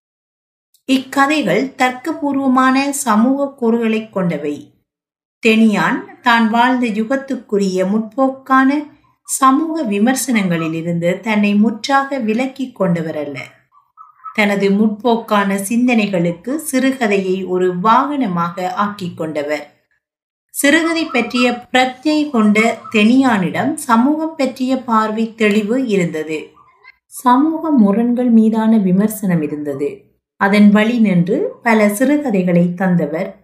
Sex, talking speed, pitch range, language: female, 85 wpm, 185-260 Hz, Tamil